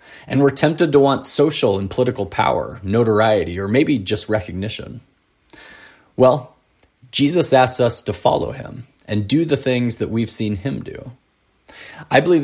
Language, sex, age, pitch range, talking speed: English, male, 30-49, 100-130 Hz, 155 wpm